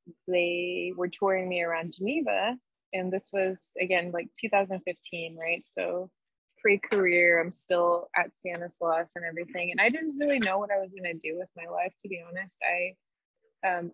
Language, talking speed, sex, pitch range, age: English, 175 wpm, female, 170-195 Hz, 20-39